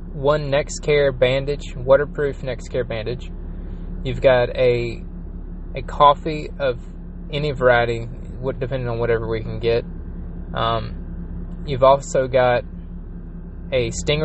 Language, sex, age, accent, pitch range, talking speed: English, male, 20-39, American, 85-135 Hz, 120 wpm